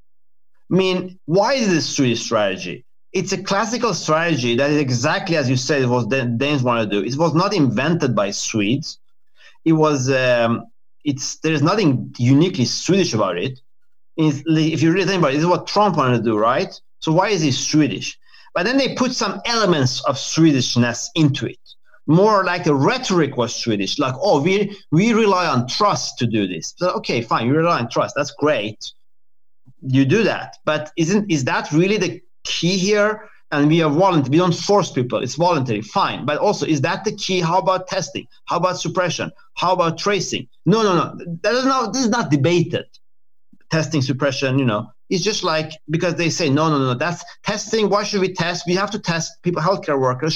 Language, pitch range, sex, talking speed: Danish, 140-190 Hz, male, 200 wpm